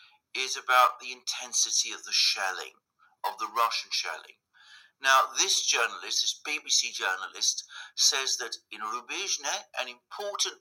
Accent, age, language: British, 50-69, English